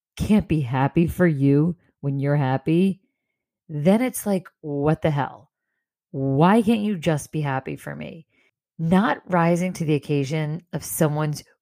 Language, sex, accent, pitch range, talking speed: English, female, American, 150-195 Hz, 150 wpm